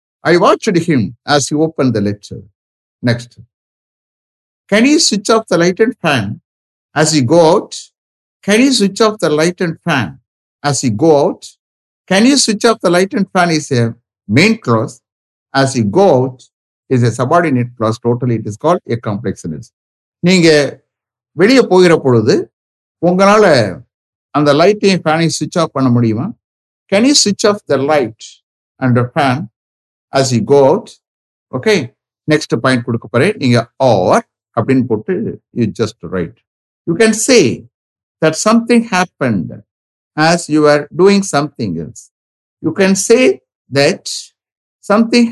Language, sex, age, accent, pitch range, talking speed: English, male, 60-79, Indian, 120-185 Hz, 140 wpm